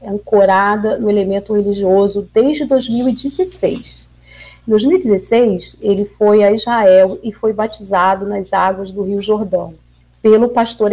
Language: Portuguese